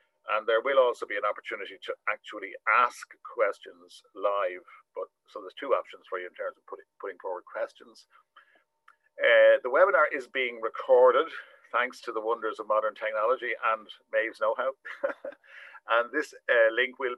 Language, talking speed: English, 165 wpm